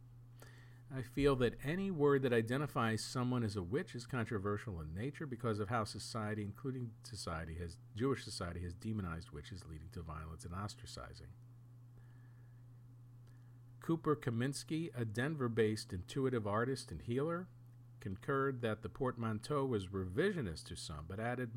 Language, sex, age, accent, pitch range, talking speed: English, male, 50-69, American, 105-130 Hz, 140 wpm